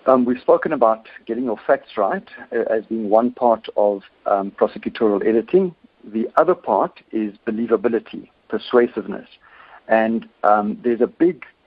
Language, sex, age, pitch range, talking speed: English, male, 60-79, 105-130 Hz, 145 wpm